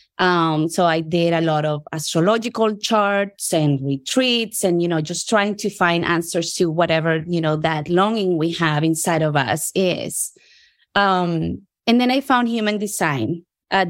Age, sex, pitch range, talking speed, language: 20-39, female, 165-195 Hz, 170 wpm, English